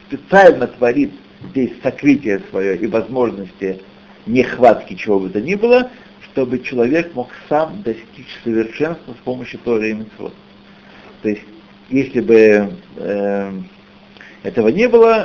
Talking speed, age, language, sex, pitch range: 120 wpm, 60-79, Russian, male, 120-170 Hz